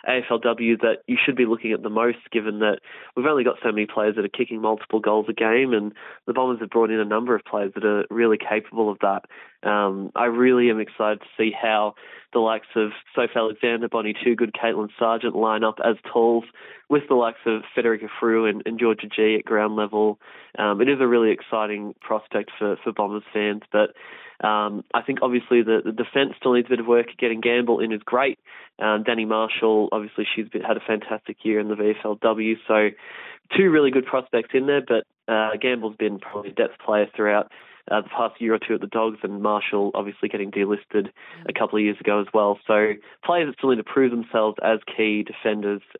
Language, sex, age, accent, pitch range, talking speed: English, male, 20-39, Australian, 105-120 Hz, 215 wpm